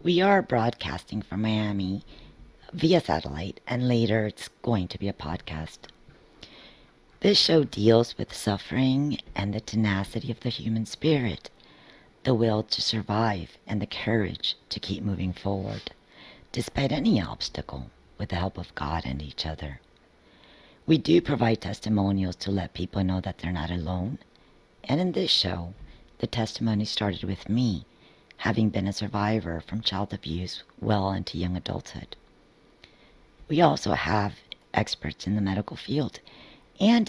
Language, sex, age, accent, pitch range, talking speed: English, female, 50-69, American, 90-110 Hz, 145 wpm